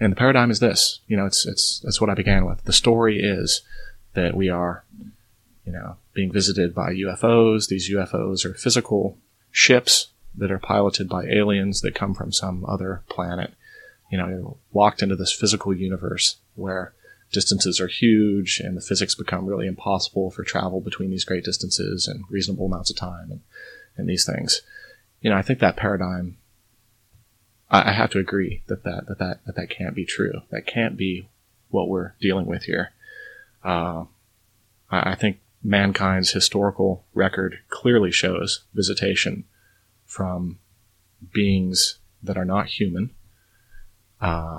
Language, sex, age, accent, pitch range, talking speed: English, male, 30-49, American, 95-110 Hz, 160 wpm